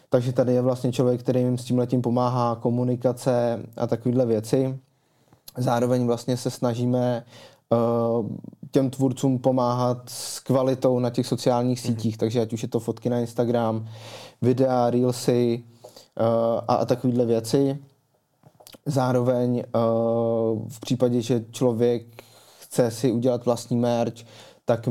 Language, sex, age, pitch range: Czech, male, 20-39, 115-125 Hz